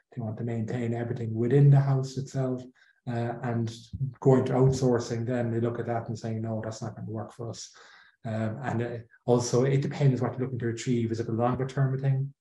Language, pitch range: English, 115-130 Hz